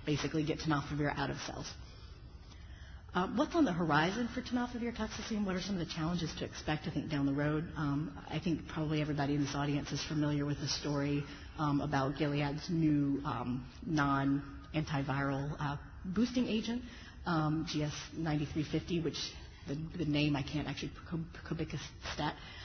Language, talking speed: English, 155 wpm